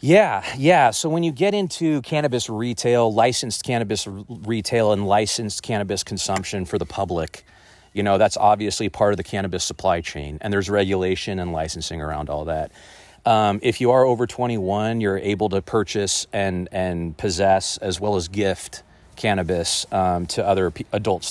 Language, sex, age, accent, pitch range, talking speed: English, male, 30-49, American, 95-115 Hz, 170 wpm